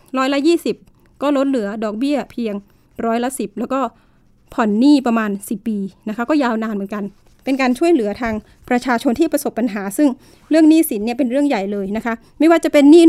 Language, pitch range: Thai, 225-285 Hz